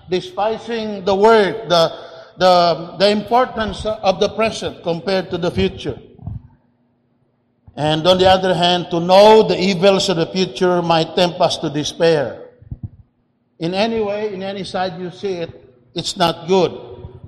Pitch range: 165-210 Hz